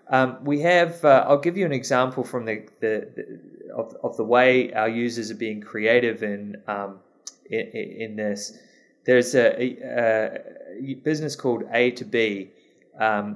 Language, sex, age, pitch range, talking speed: English, male, 20-39, 110-130 Hz, 165 wpm